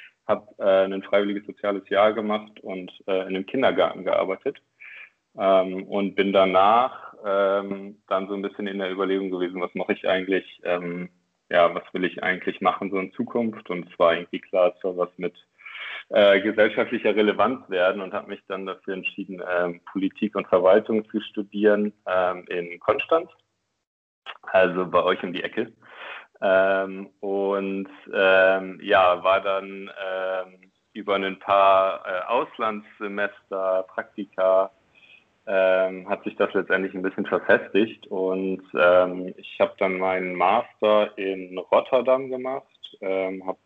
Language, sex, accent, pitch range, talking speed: German, male, German, 95-100 Hz, 145 wpm